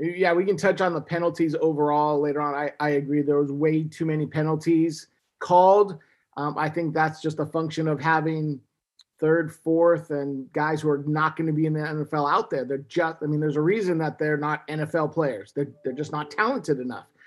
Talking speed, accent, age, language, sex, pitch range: 210 wpm, American, 30-49, English, male, 150-200 Hz